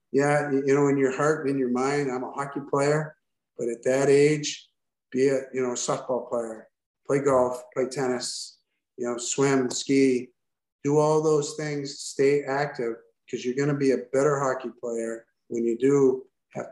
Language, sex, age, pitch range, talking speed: English, male, 50-69, 125-145 Hz, 185 wpm